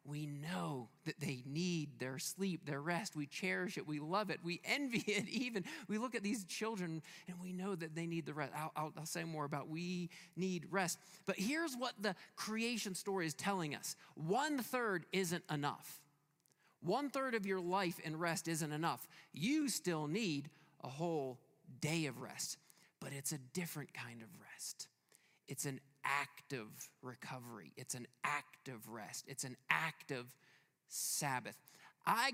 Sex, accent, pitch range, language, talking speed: male, American, 140-180 Hz, English, 170 wpm